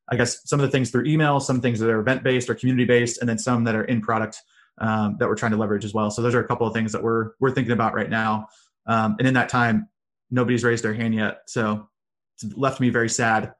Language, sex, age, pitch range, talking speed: English, male, 20-39, 115-130 Hz, 275 wpm